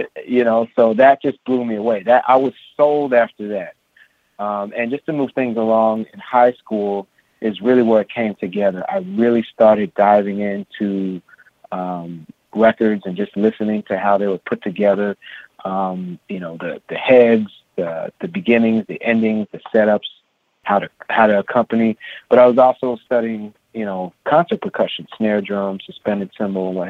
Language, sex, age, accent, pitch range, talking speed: English, male, 30-49, American, 105-125 Hz, 175 wpm